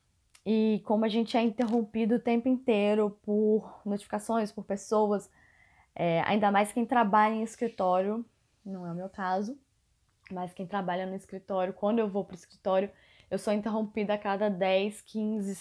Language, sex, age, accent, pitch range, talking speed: Portuguese, female, 10-29, Brazilian, 195-230 Hz, 165 wpm